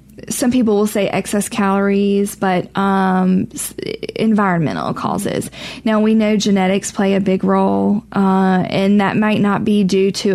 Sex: female